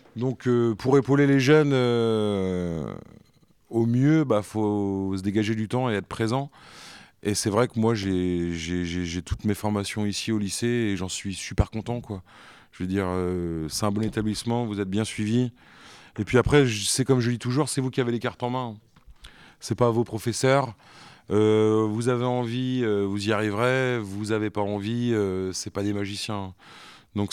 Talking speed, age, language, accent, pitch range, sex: 200 wpm, 30-49, French, French, 100-120 Hz, male